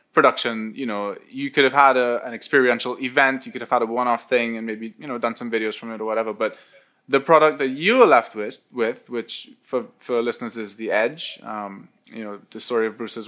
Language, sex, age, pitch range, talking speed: English, male, 20-39, 115-140 Hz, 235 wpm